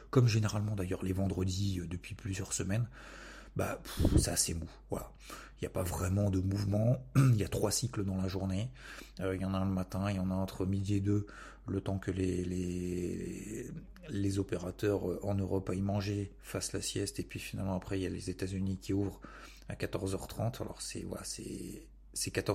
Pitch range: 95-105 Hz